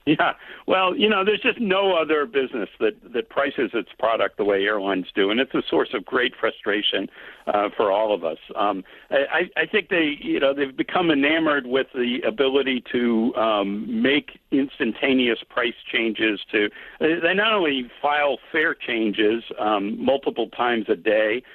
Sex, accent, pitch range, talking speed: male, American, 115-160 Hz, 170 wpm